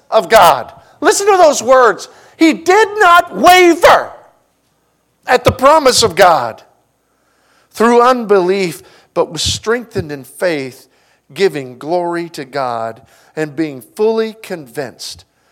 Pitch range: 140-210 Hz